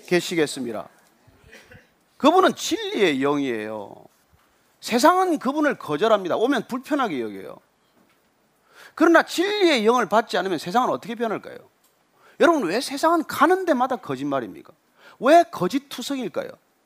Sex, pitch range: male, 215-315 Hz